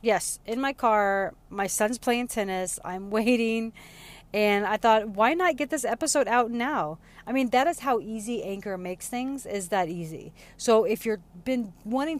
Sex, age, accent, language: female, 30-49, American, English